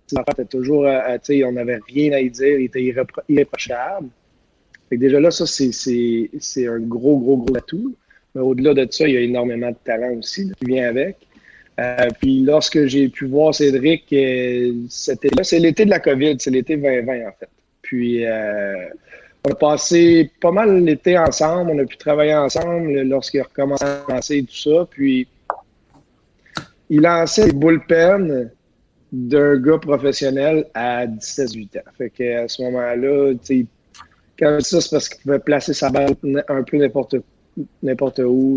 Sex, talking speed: male, 170 wpm